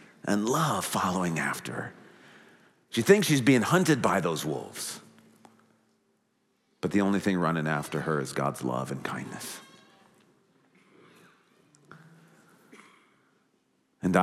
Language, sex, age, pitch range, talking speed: English, male, 40-59, 85-130 Hz, 110 wpm